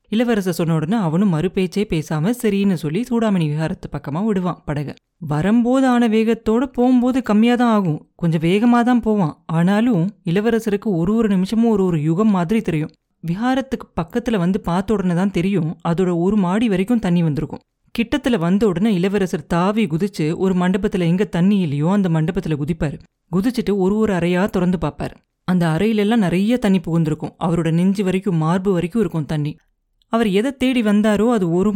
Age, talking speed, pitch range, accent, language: 30-49, 155 wpm, 170-220 Hz, native, Tamil